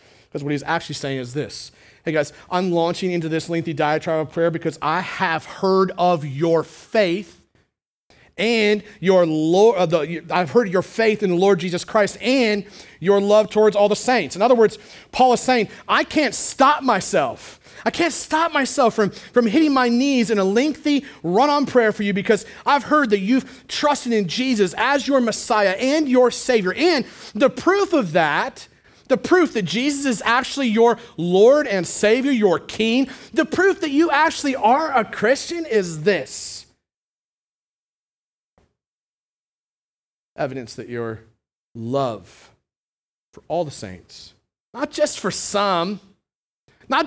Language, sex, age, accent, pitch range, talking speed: English, male, 30-49, American, 175-255 Hz, 160 wpm